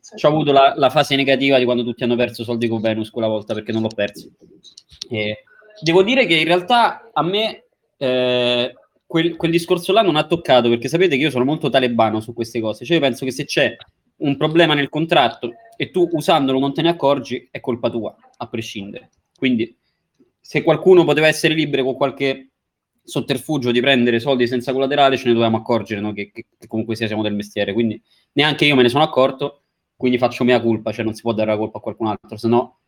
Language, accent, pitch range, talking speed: Italian, native, 115-150 Hz, 215 wpm